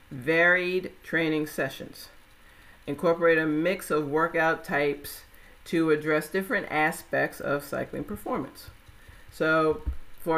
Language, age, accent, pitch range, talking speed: English, 50-69, American, 145-165 Hz, 105 wpm